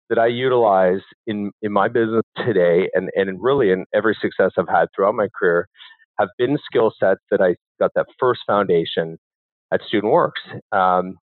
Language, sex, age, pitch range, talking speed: English, male, 40-59, 100-130 Hz, 175 wpm